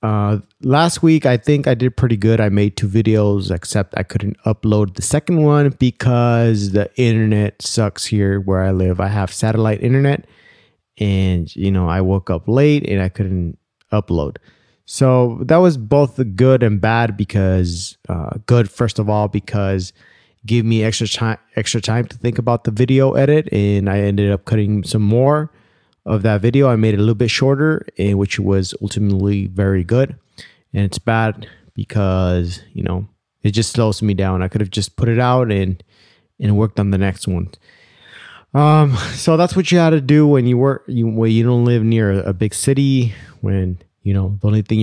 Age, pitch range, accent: 30-49, 100-120 Hz, American